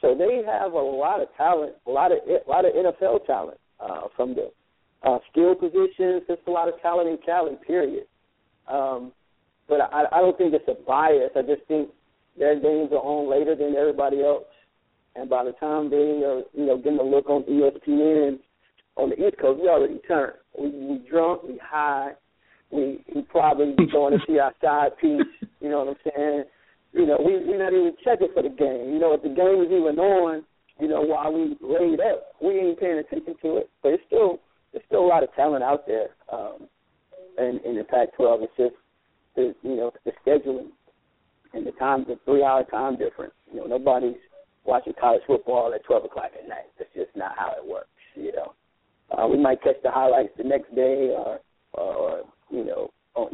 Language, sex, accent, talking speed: English, male, American, 210 wpm